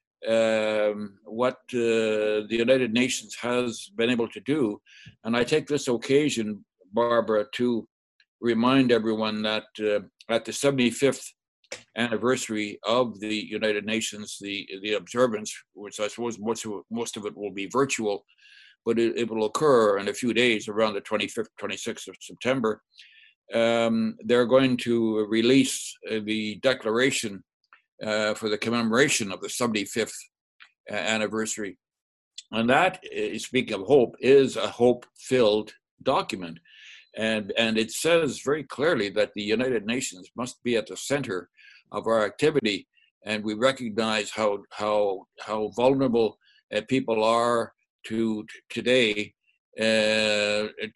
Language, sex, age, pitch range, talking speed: English, male, 60-79, 105-120 Hz, 140 wpm